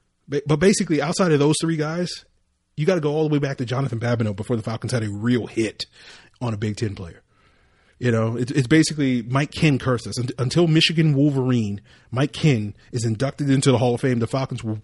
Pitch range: 110-145 Hz